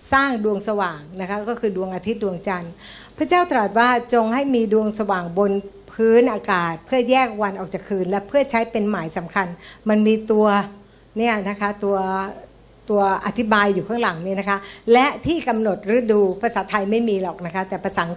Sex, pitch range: female, 195-245 Hz